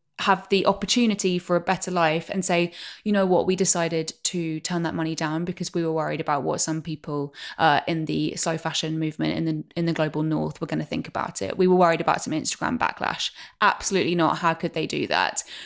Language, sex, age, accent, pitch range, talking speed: English, female, 20-39, British, 160-190 Hz, 225 wpm